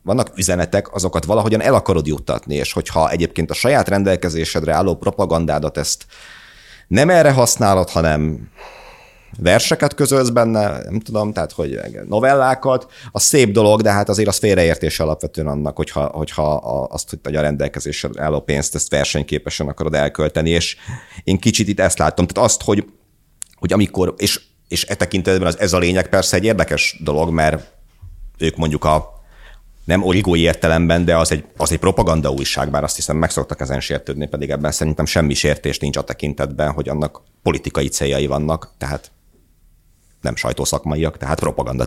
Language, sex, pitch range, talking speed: Hungarian, male, 75-90 Hz, 160 wpm